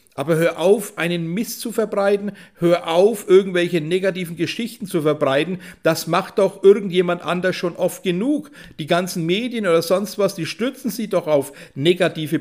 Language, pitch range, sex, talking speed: German, 165-210 Hz, male, 165 wpm